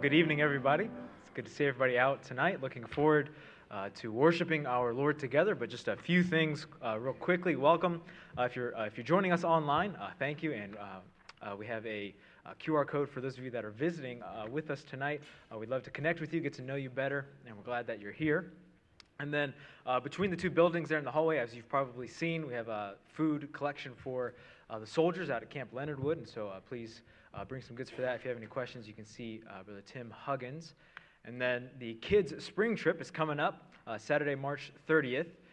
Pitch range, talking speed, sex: 120-155 Hz, 240 wpm, male